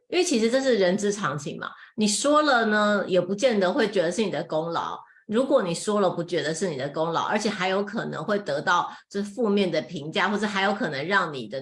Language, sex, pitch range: Chinese, female, 175-230 Hz